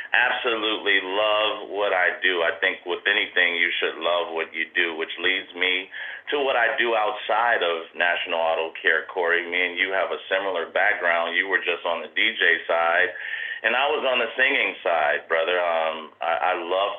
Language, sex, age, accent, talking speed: English, male, 40-59, American, 190 wpm